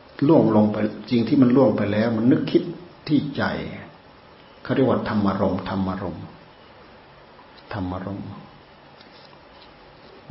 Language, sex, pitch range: Thai, male, 100-115 Hz